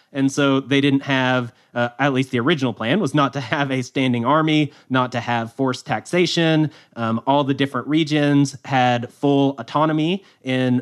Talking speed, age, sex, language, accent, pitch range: 175 wpm, 30-49, male, English, American, 130-145 Hz